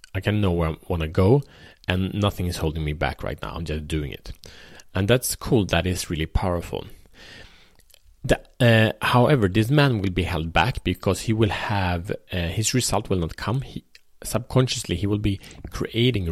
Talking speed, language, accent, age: 190 wpm, Swedish, Norwegian, 30-49